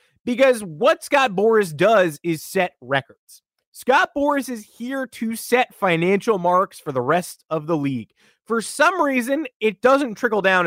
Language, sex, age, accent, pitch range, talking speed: English, male, 30-49, American, 155-230 Hz, 165 wpm